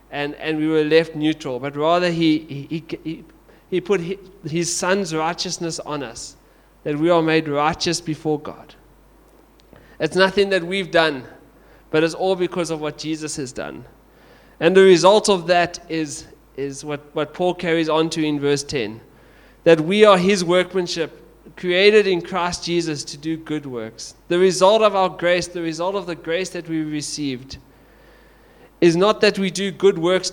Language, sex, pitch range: English, male, 155-185 Hz